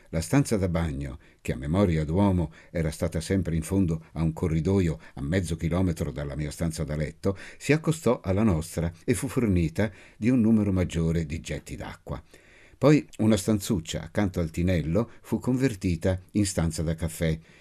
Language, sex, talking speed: Italian, male, 170 wpm